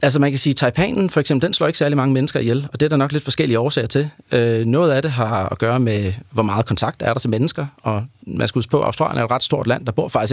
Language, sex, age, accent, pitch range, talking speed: Danish, male, 30-49, native, 110-135 Hz, 300 wpm